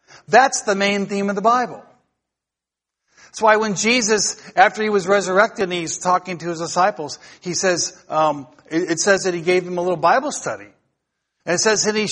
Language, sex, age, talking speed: English, male, 50-69, 200 wpm